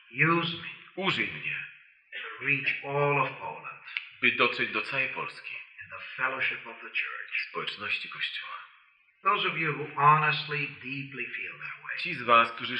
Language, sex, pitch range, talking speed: Polish, male, 125-155 Hz, 85 wpm